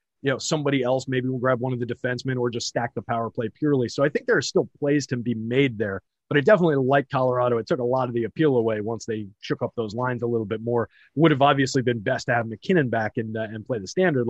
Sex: male